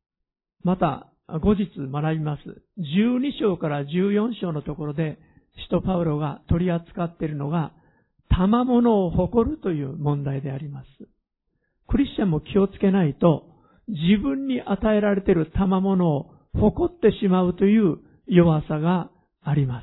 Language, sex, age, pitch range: Japanese, male, 50-69, 150-200 Hz